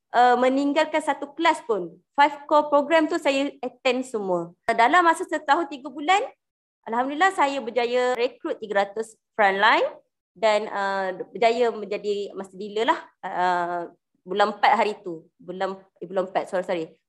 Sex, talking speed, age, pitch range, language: female, 150 wpm, 20-39, 225-285 Hz, Malay